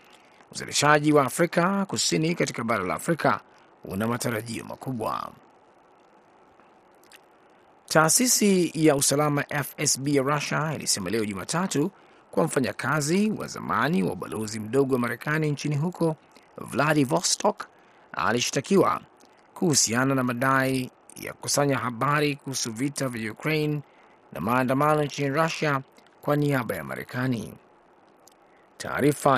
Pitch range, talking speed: 125-155 Hz, 105 wpm